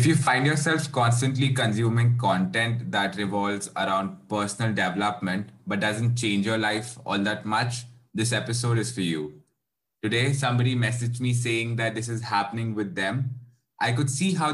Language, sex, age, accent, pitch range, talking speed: English, male, 20-39, Indian, 110-130 Hz, 165 wpm